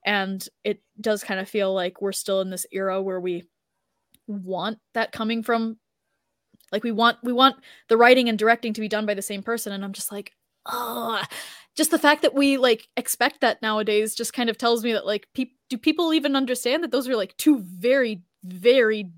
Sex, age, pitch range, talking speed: female, 10-29, 210-255 Hz, 205 wpm